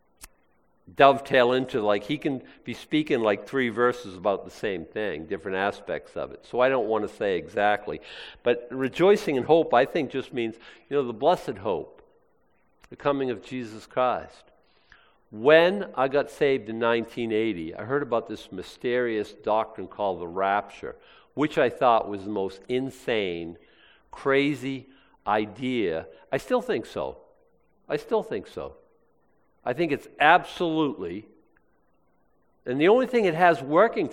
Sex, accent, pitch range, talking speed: male, American, 110-155 Hz, 150 wpm